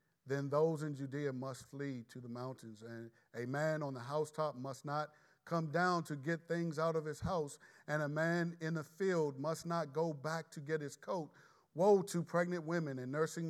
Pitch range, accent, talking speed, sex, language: 140-170 Hz, American, 205 wpm, male, English